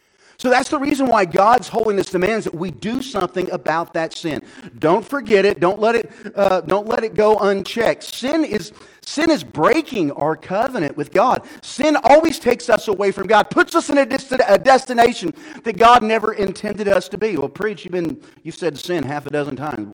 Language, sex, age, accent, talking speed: English, male, 40-59, American, 205 wpm